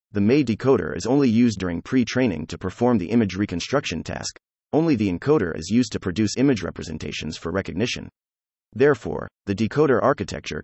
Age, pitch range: 30-49, 85-125 Hz